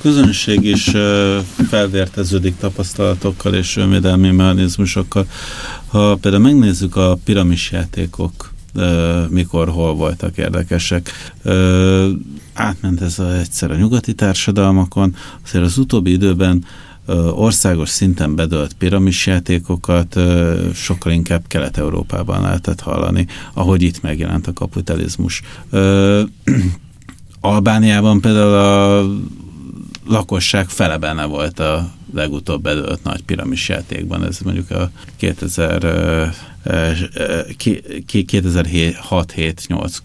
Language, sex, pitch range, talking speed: Hungarian, male, 85-105 Hz, 85 wpm